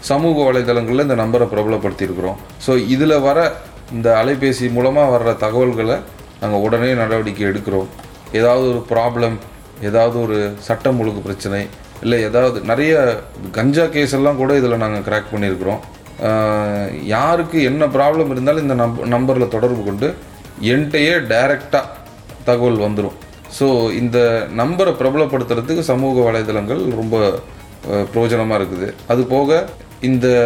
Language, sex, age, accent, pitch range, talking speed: Tamil, male, 30-49, native, 105-135 Hz, 120 wpm